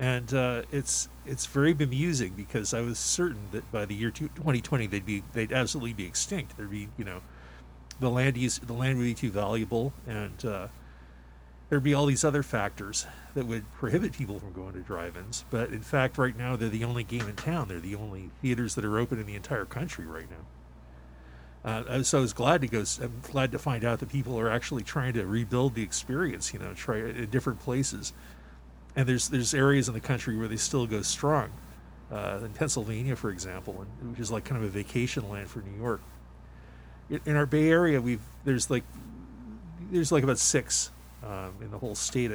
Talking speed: 210 wpm